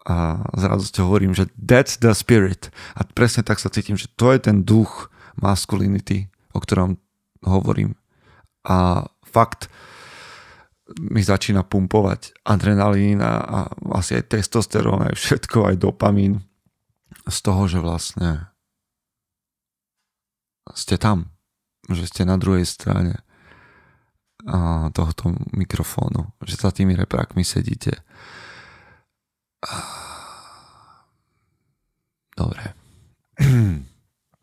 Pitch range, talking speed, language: 95-110 Hz, 95 wpm, Slovak